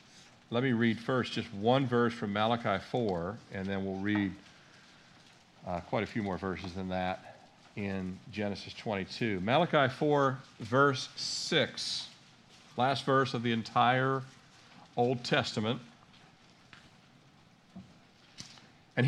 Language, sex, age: English, male, 50-69